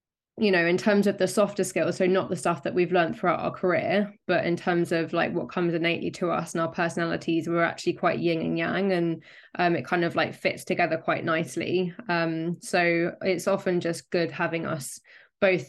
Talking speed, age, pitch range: 215 wpm, 20-39, 170-195 Hz